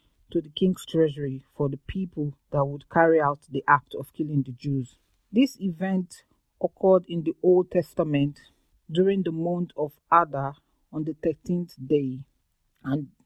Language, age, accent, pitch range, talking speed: English, 40-59, Nigerian, 155-185 Hz, 155 wpm